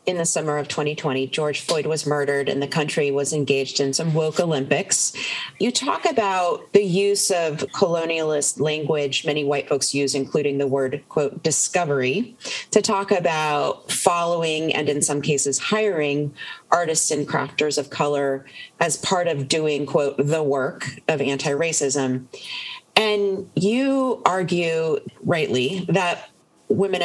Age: 30-49